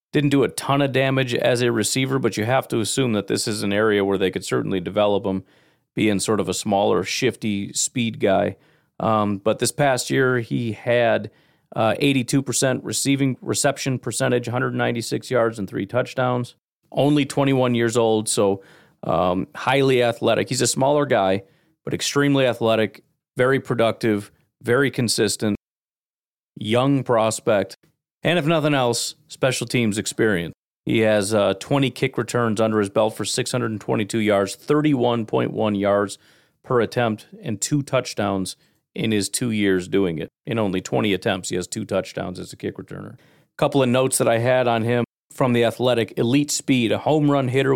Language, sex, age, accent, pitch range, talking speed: English, male, 40-59, American, 110-130 Hz, 165 wpm